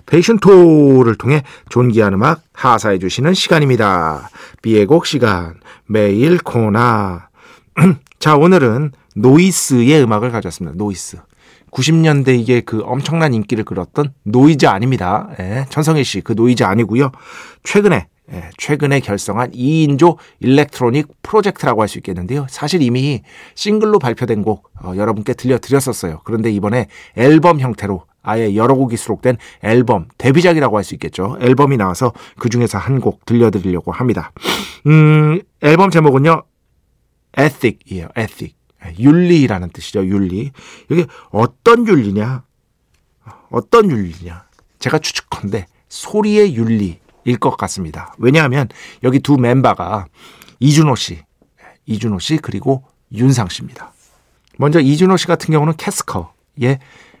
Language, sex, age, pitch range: Korean, male, 40-59, 105-150 Hz